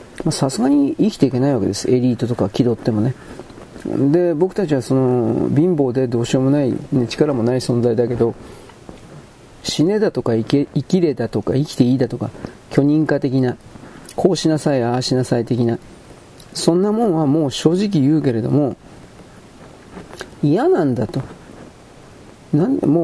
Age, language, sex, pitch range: 40-59, Japanese, male, 120-155 Hz